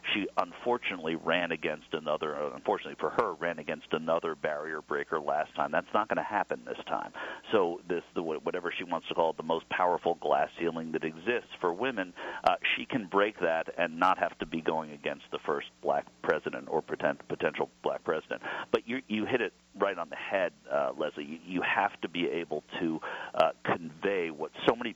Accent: American